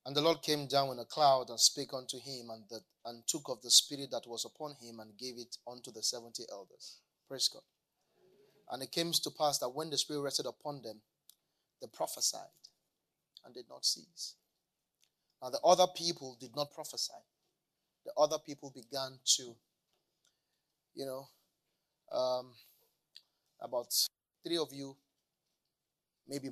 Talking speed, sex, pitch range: 160 wpm, male, 120-140 Hz